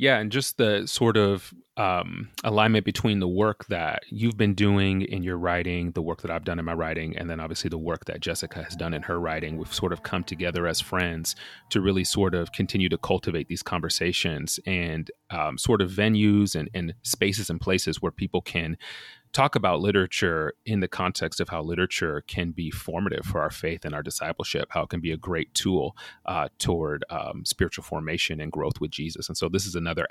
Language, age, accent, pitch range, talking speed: English, 30-49, American, 85-105 Hz, 210 wpm